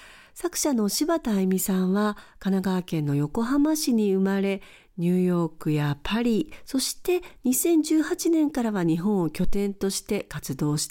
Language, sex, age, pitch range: Japanese, female, 50-69, 170-255 Hz